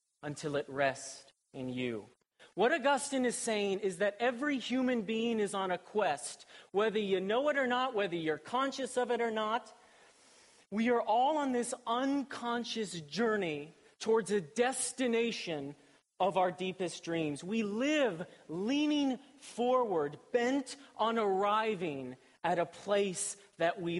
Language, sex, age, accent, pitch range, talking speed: English, male, 40-59, American, 145-220 Hz, 145 wpm